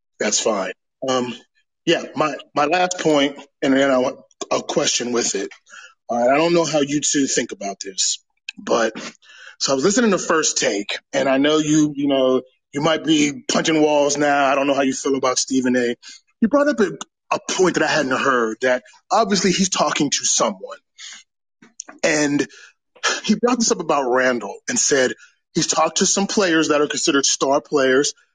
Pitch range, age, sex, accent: 135-165 Hz, 20-39, male, American